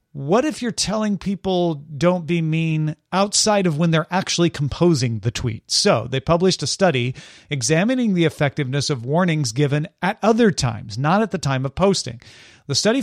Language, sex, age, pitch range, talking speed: English, male, 40-59, 140-190 Hz, 175 wpm